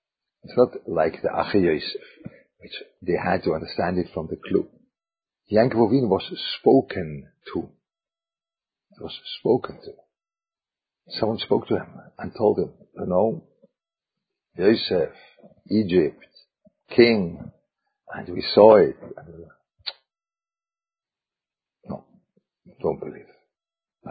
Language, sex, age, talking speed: English, male, 50-69, 115 wpm